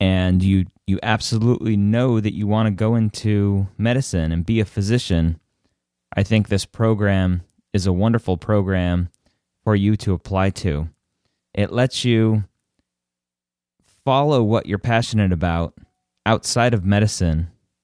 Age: 30-49